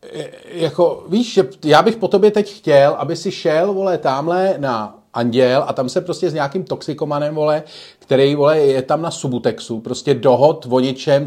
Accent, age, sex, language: native, 40-59, male, Czech